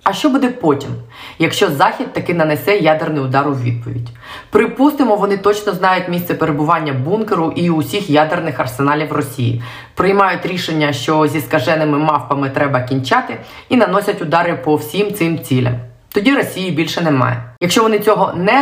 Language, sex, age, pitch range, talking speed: Ukrainian, female, 20-39, 145-185 Hz, 150 wpm